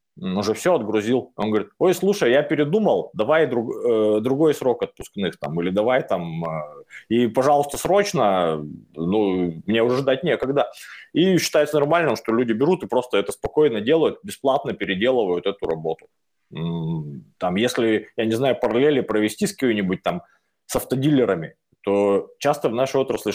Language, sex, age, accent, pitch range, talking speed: Russian, male, 20-39, native, 100-150 Hz, 155 wpm